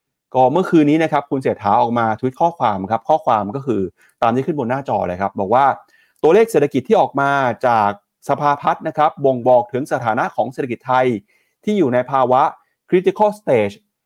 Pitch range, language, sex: 130-170 Hz, Thai, male